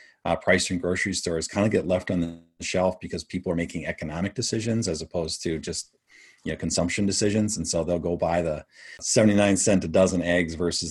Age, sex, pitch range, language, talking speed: 40-59, male, 85-100 Hz, English, 205 wpm